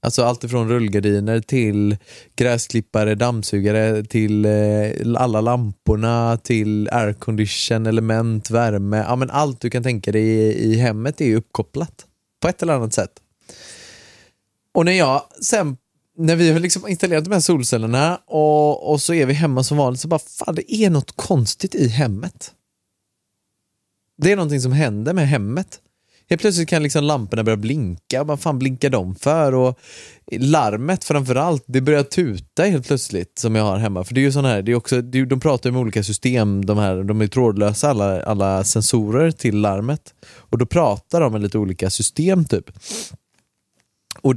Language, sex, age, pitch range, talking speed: Swedish, male, 20-39, 110-150 Hz, 170 wpm